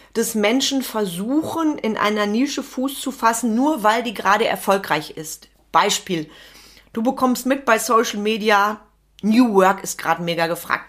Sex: female